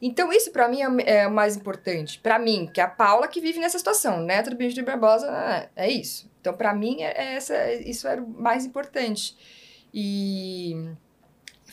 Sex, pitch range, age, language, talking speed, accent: female, 190-275 Hz, 20-39, Portuguese, 205 wpm, Brazilian